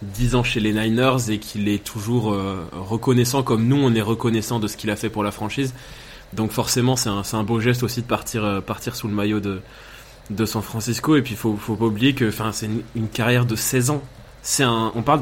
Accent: French